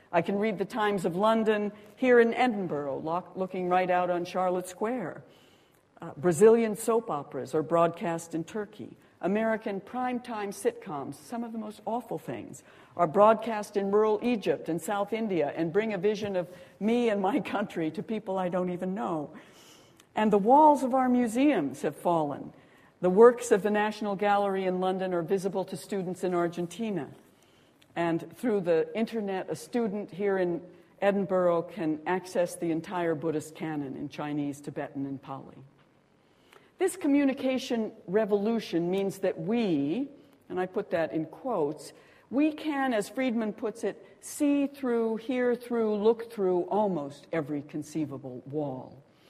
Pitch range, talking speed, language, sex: 170-225 Hz, 155 wpm, English, female